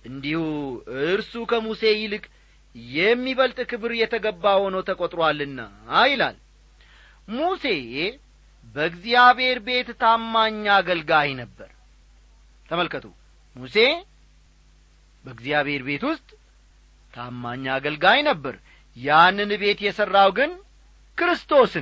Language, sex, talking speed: Amharic, male, 80 wpm